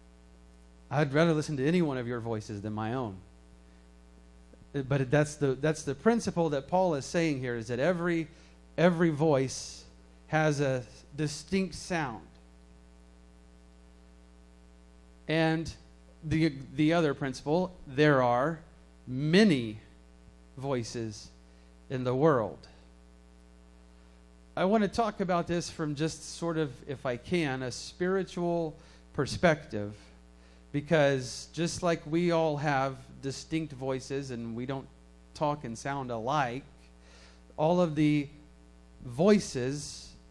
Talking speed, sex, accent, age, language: 120 wpm, male, American, 40-59, English